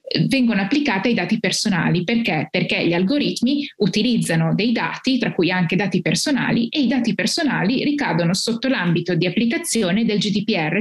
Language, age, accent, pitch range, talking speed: Italian, 20-39, native, 190-250 Hz, 155 wpm